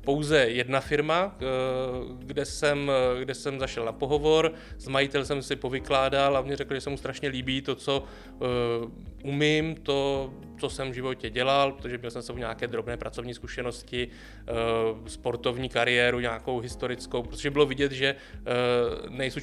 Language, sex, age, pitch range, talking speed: Czech, male, 20-39, 125-145 Hz, 150 wpm